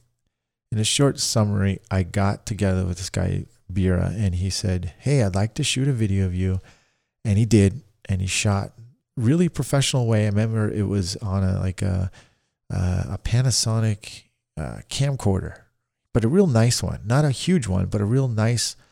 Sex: male